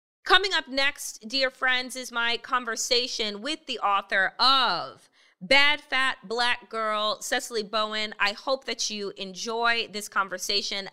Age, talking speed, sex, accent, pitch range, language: 30-49, 135 wpm, female, American, 185-240 Hz, English